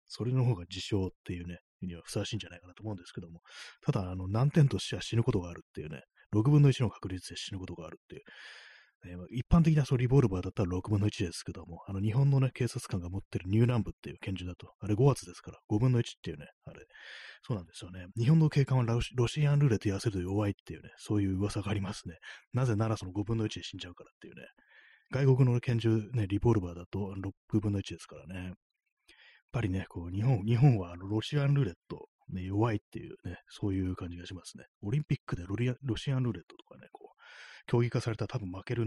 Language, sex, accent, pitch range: Japanese, male, native, 90-115 Hz